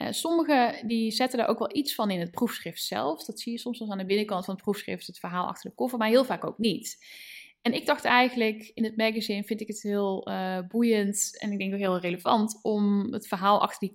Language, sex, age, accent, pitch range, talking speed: Dutch, female, 10-29, Dutch, 195-230 Hz, 245 wpm